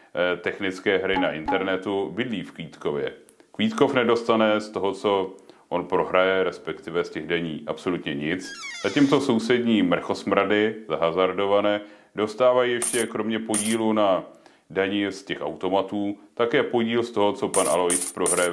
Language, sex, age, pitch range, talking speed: Czech, male, 30-49, 95-115 Hz, 135 wpm